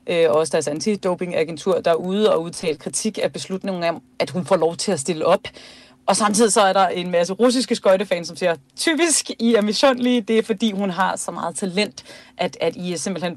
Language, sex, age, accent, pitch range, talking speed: Danish, female, 30-49, native, 165-200 Hz, 220 wpm